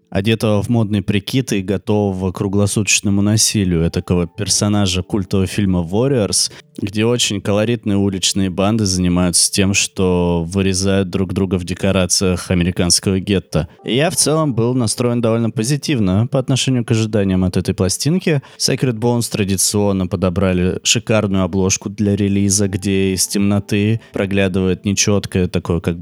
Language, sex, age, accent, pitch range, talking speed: Russian, male, 20-39, native, 95-115 Hz, 135 wpm